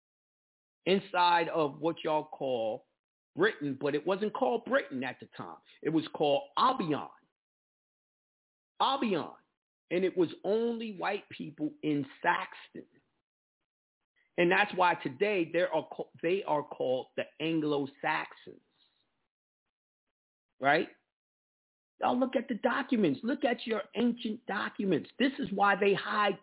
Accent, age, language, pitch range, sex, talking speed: American, 50-69, English, 160-245 Hz, male, 125 wpm